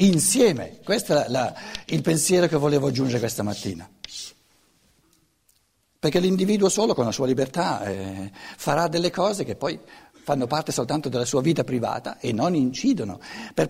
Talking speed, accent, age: 155 wpm, native, 60-79